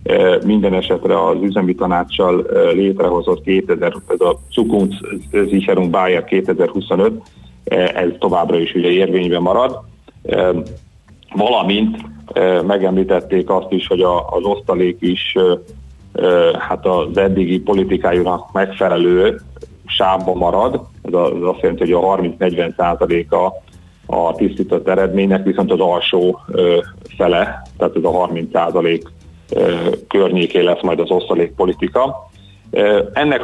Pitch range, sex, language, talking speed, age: 90-120 Hz, male, Hungarian, 100 wpm, 40-59